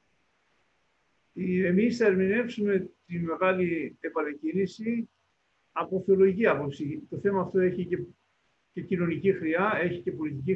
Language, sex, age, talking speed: Greek, male, 50-69, 110 wpm